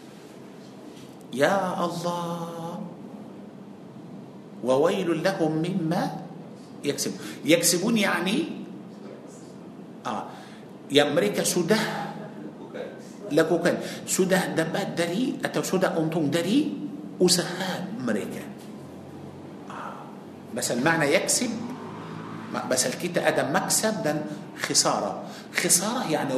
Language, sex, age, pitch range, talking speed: Malay, male, 50-69, 165-215 Hz, 75 wpm